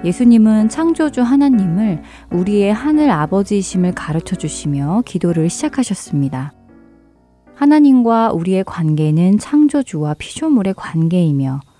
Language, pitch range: Korean, 155-220 Hz